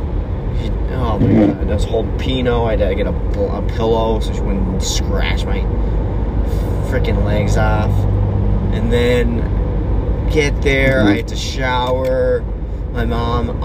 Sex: male